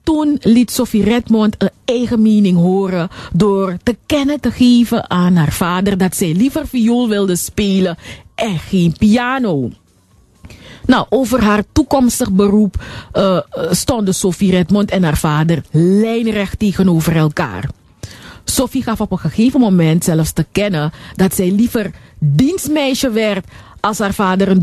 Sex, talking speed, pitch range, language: female, 140 wpm, 175-230 Hz, Dutch